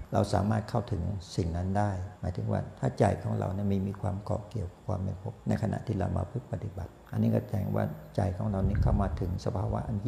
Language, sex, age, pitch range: Thai, male, 60-79, 95-115 Hz